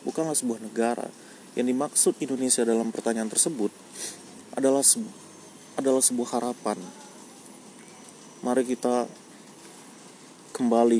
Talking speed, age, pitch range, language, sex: 95 wpm, 30-49, 115-130 Hz, Indonesian, male